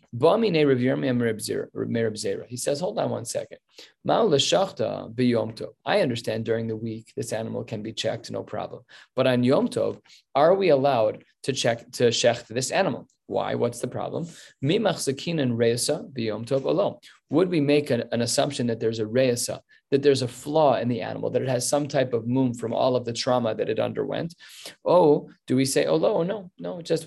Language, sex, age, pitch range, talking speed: English, male, 30-49, 115-140 Hz, 160 wpm